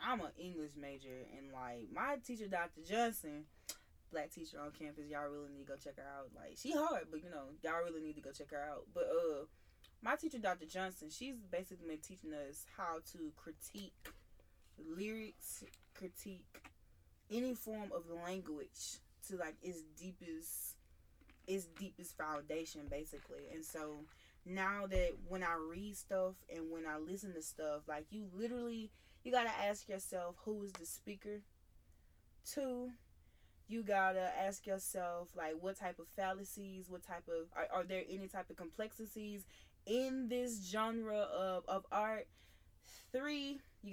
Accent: American